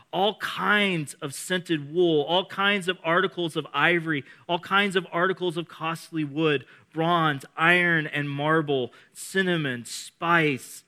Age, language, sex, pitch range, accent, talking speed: 30-49, English, male, 145-180 Hz, American, 130 wpm